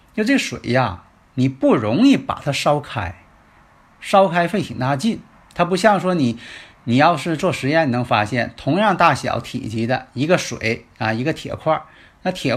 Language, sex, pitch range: Chinese, male, 115-170 Hz